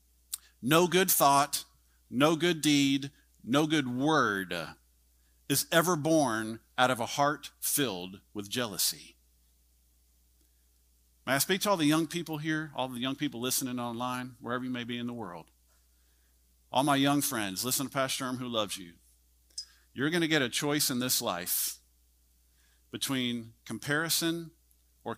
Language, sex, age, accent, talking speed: English, male, 50-69, American, 155 wpm